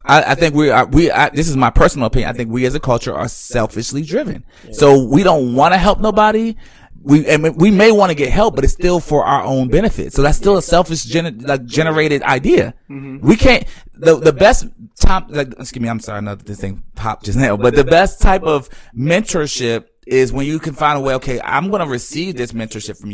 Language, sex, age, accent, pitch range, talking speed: English, male, 30-49, American, 120-160 Hz, 240 wpm